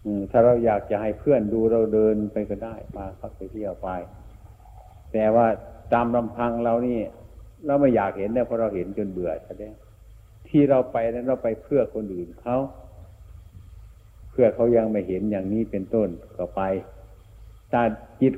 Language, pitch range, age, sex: Thai, 95-115 Hz, 60-79, male